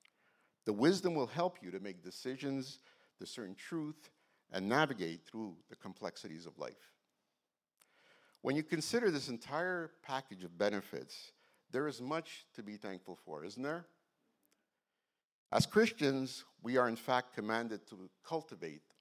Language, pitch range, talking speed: English, 100-150 Hz, 135 wpm